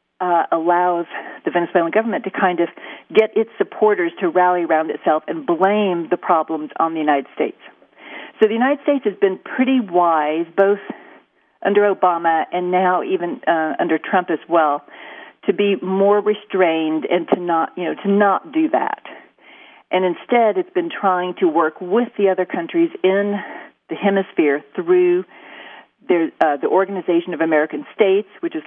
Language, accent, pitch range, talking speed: English, American, 160-205 Hz, 160 wpm